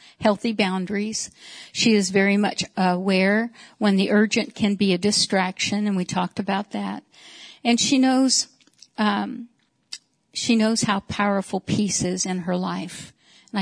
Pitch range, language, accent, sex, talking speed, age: 185-225 Hz, English, American, female, 145 wpm, 60-79